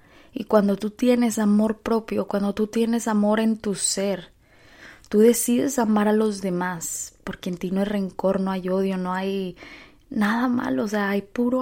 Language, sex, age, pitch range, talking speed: Spanish, female, 20-39, 185-225 Hz, 185 wpm